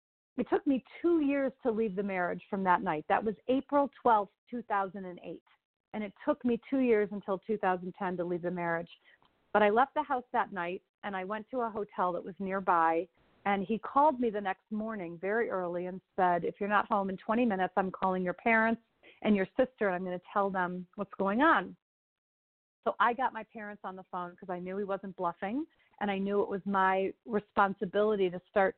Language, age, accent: English, 40-59, American